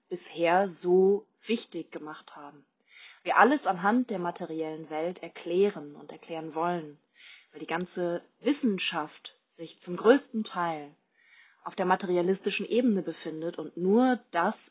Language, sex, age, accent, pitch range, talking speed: German, female, 20-39, German, 165-220 Hz, 125 wpm